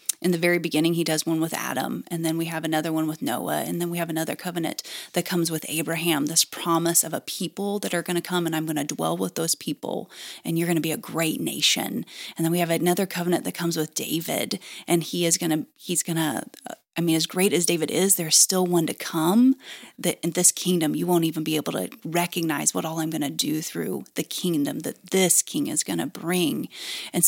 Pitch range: 160-180 Hz